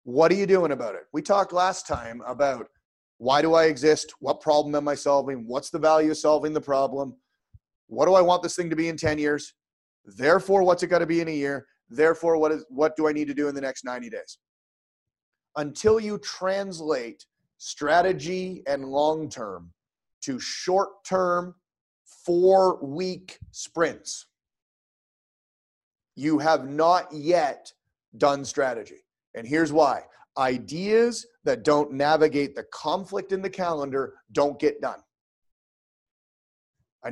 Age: 30-49